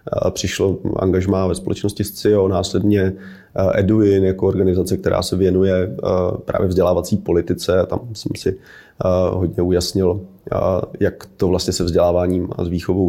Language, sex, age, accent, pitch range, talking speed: Czech, male, 30-49, native, 85-95 Hz, 130 wpm